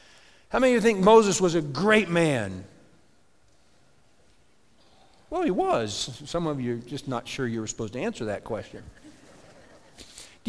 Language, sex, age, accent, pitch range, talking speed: English, male, 50-69, American, 155-205 Hz, 160 wpm